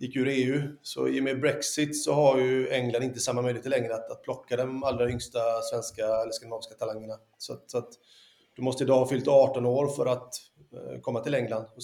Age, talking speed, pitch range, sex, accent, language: 30-49, 220 wpm, 120-140 Hz, male, native, Swedish